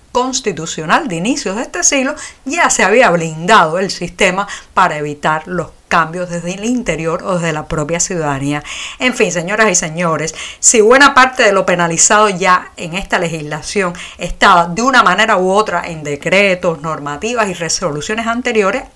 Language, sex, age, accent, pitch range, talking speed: Spanish, female, 50-69, American, 175-240 Hz, 160 wpm